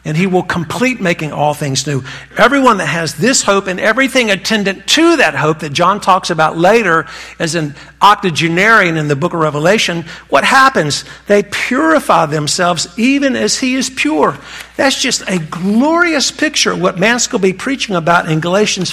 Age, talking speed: 50-69, 175 wpm